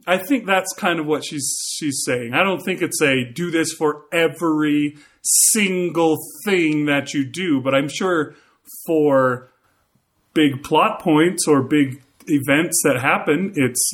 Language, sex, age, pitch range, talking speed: English, male, 30-49, 125-160 Hz, 155 wpm